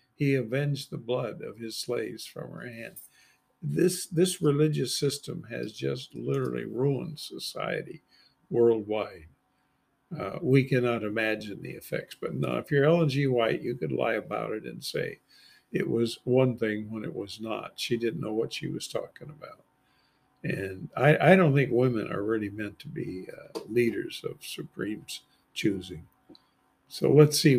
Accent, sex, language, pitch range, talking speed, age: American, male, English, 120-180 Hz, 165 wpm, 50-69